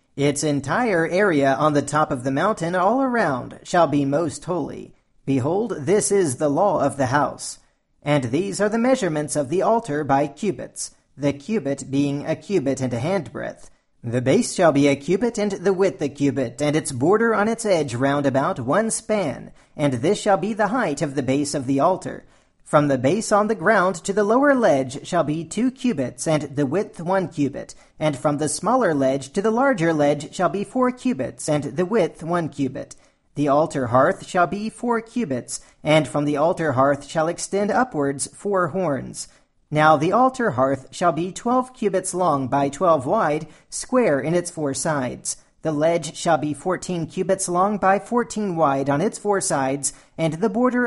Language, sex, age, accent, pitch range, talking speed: English, male, 40-59, American, 140-205 Hz, 190 wpm